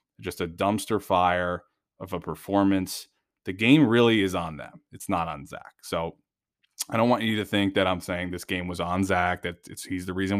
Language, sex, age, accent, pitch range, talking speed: English, male, 20-39, American, 90-105 Hz, 215 wpm